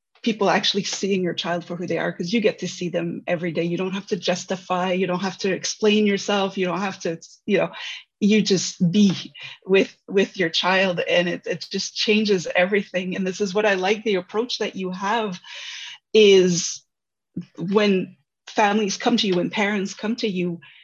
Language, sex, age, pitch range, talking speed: English, female, 30-49, 180-210 Hz, 200 wpm